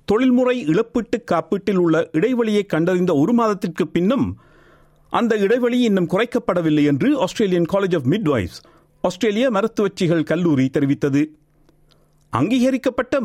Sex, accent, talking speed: male, native, 110 wpm